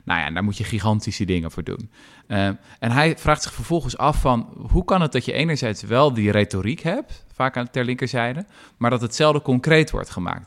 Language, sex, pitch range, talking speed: Dutch, male, 95-130 Hz, 205 wpm